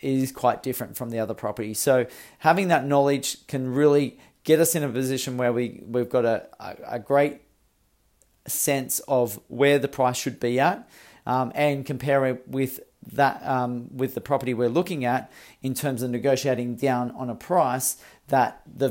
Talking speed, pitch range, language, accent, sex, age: 180 wpm, 120-140 Hz, English, Australian, male, 40-59